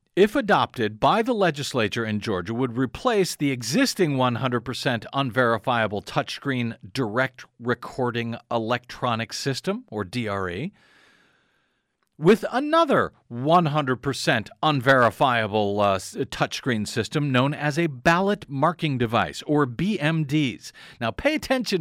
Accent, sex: American, male